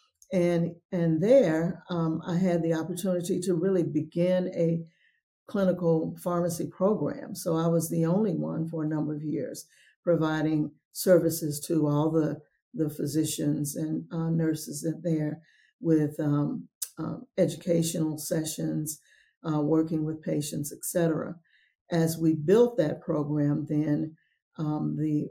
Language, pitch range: English, 155-180 Hz